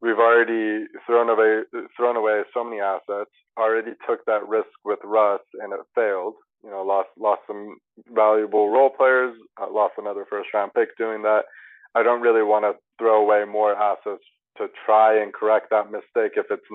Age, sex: 20-39, male